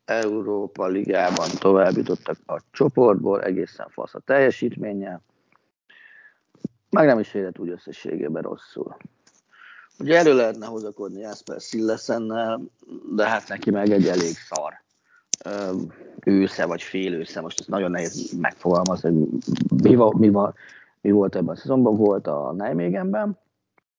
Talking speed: 120 wpm